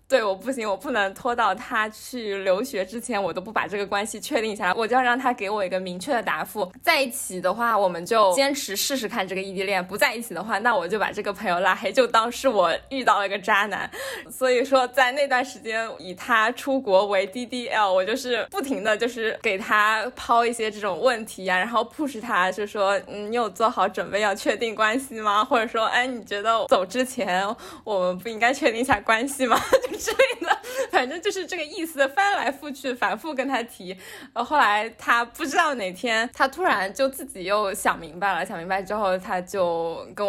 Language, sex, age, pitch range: Chinese, female, 20-39, 195-260 Hz